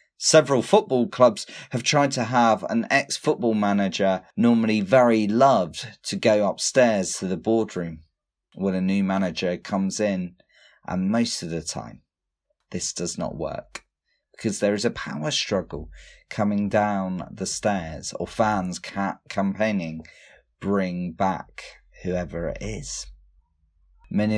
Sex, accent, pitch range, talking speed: male, British, 85-115 Hz, 130 wpm